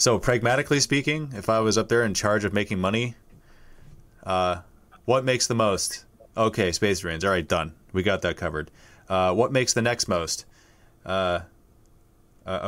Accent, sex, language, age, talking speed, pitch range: American, male, English, 30-49, 170 wpm, 95-115 Hz